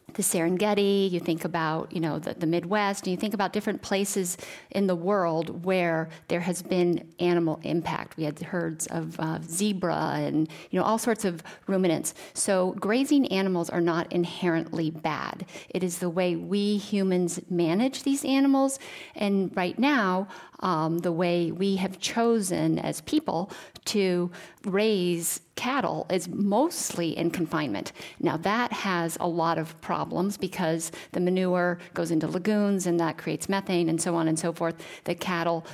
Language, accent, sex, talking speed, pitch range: English, American, female, 165 wpm, 165-195 Hz